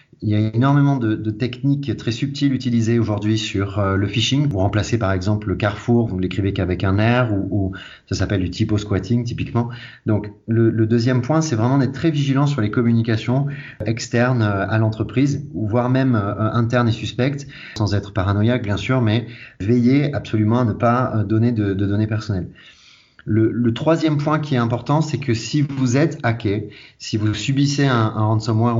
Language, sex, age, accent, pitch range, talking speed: French, male, 30-49, French, 100-125 Hz, 190 wpm